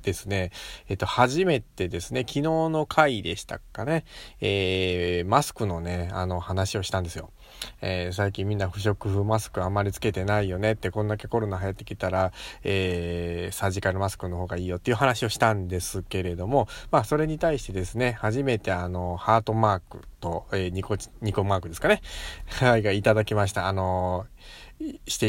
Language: Japanese